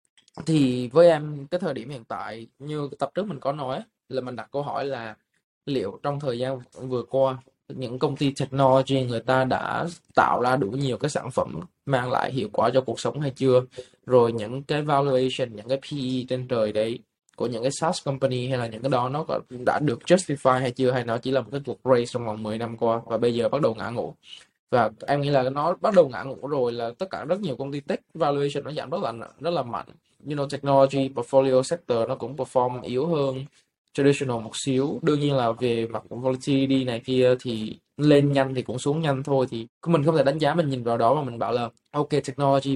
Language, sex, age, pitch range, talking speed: Vietnamese, male, 20-39, 125-145 Hz, 235 wpm